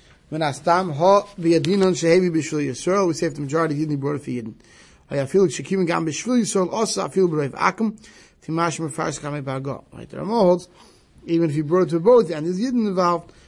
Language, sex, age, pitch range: English, male, 30-49, 135-170 Hz